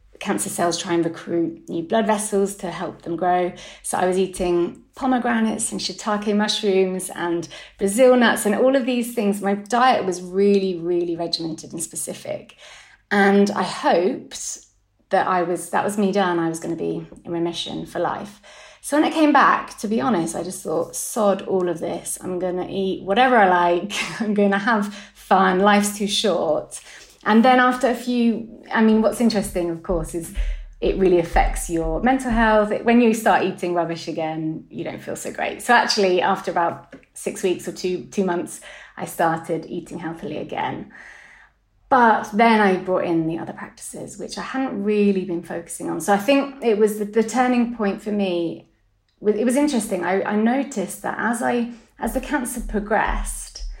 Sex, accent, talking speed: female, British, 185 wpm